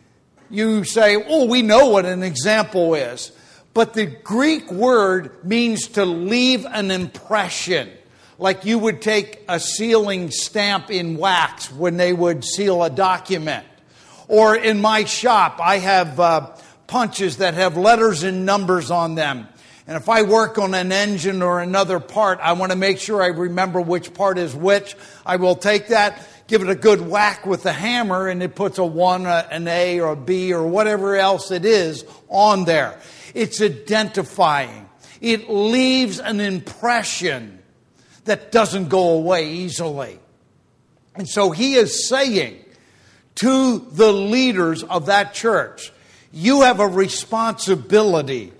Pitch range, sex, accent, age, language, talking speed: 180-220 Hz, male, American, 50-69, English, 155 wpm